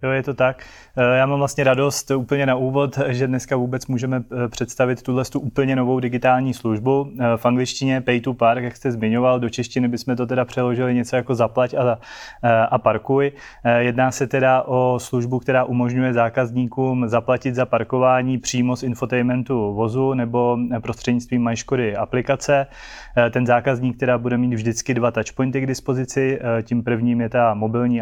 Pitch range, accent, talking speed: 115-130 Hz, native, 160 wpm